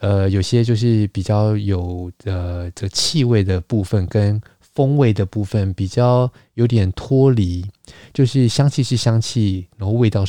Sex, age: male, 20-39